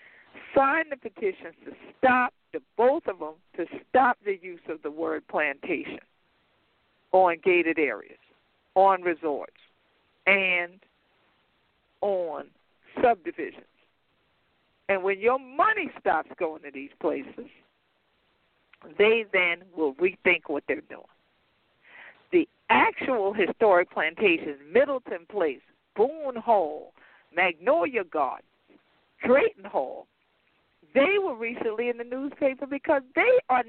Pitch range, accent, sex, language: 165-265 Hz, American, female, English